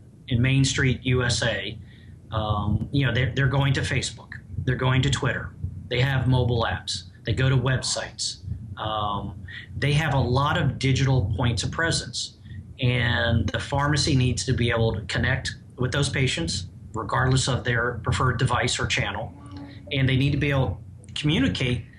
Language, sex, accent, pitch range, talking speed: English, male, American, 110-135 Hz, 165 wpm